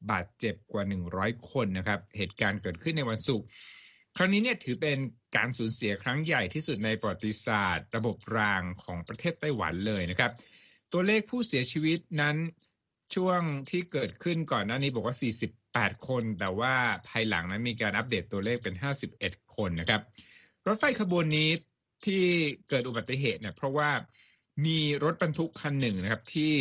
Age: 60-79